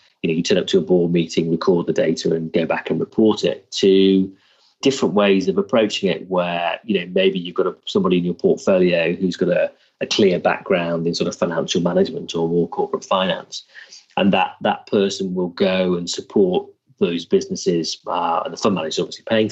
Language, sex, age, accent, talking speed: English, male, 30-49, British, 210 wpm